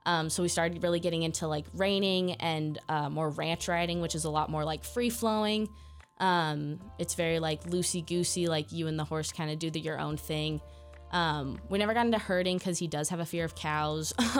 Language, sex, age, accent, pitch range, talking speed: English, female, 20-39, American, 150-180 Hz, 220 wpm